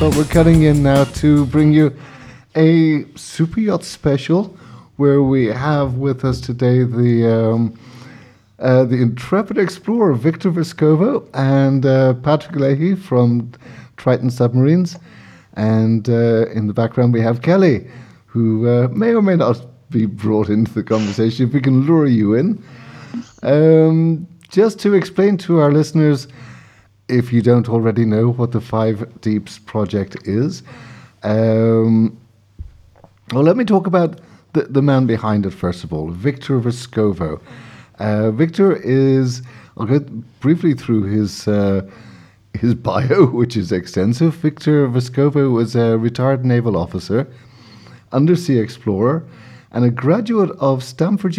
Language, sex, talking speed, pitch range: English, male, 140 wpm, 115-155 Hz